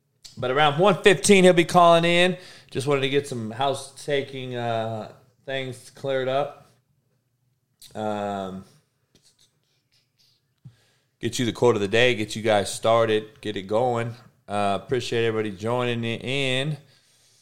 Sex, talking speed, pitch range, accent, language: male, 130 wpm, 115-150 Hz, American, English